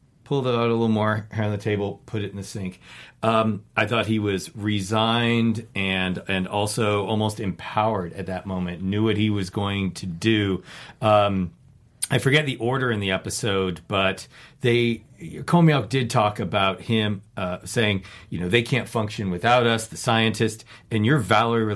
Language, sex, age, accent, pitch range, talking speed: English, male, 40-59, American, 95-115 Hz, 180 wpm